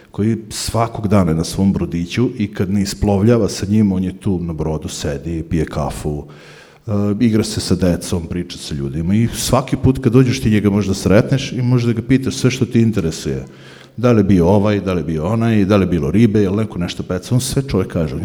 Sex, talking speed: male, 225 wpm